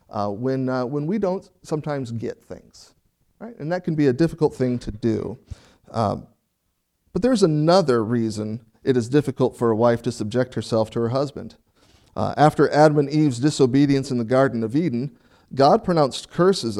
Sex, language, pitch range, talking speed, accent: male, English, 115-155 Hz, 180 wpm, American